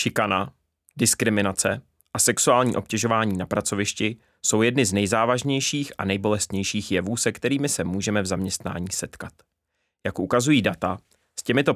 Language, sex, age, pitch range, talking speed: Czech, male, 30-49, 95-130 Hz, 135 wpm